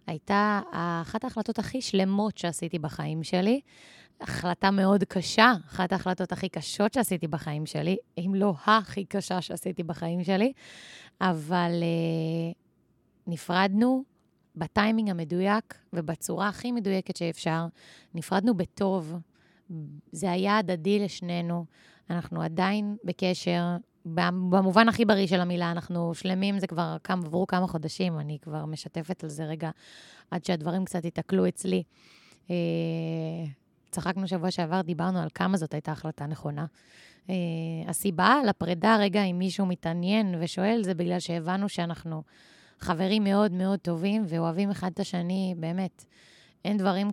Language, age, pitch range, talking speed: Hebrew, 20-39, 170-195 Hz, 130 wpm